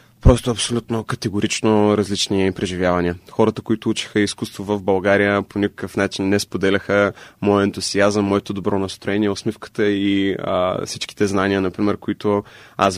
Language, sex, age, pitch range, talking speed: Bulgarian, male, 20-39, 100-115 Hz, 135 wpm